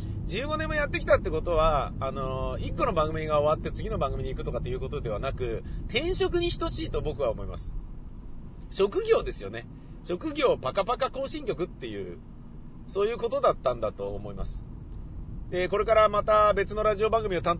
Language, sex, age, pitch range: Japanese, male, 40-59, 125-210 Hz